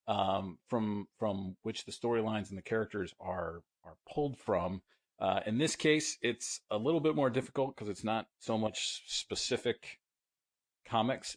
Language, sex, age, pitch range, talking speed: English, male, 40-59, 95-120 Hz, 160 wpm